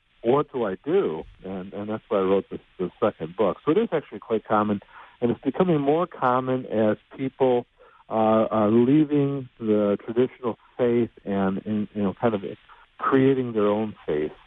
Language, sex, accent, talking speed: English, male, American, 180 wpm